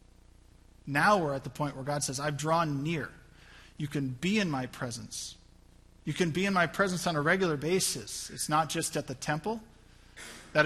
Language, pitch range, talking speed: English, 130-195 Hz, 190 wpm